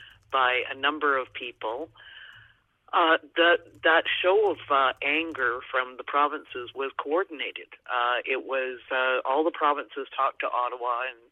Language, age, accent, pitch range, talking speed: English, 50-69, American, 130-175 Hz, 150 wpm